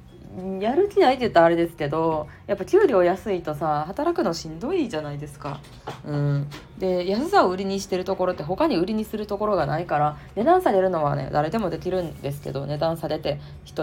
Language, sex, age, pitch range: Japanese, female, 20-39, 150-205 Hz